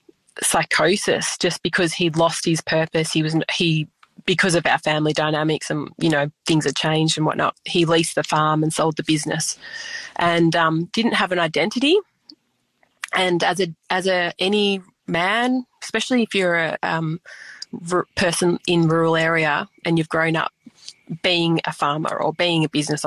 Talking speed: 170 wpm